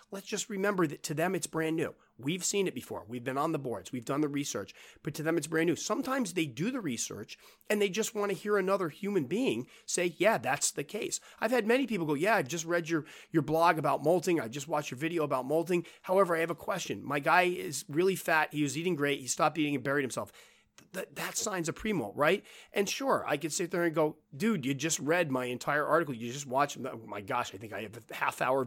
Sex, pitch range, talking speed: male, 140-195 Hz, 255 wpm